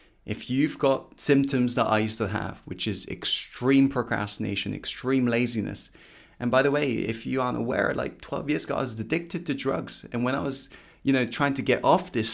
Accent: British